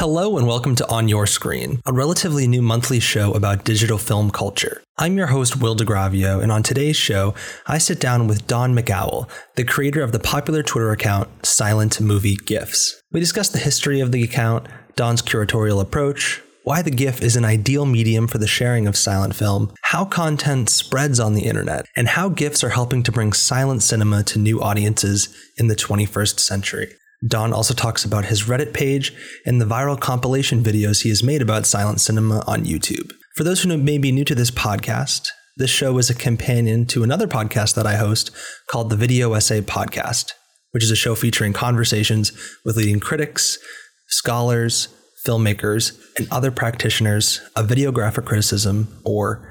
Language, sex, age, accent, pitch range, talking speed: English, male, 20-39, American, 105-135 Hz, 180 wpm